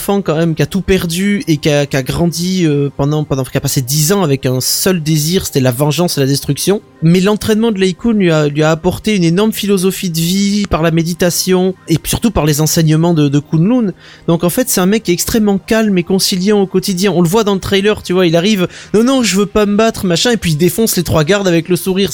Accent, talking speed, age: French, 260 wpm, 20-39